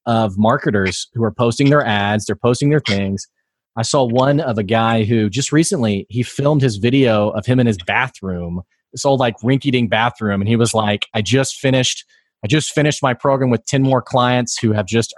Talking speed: 210 wpm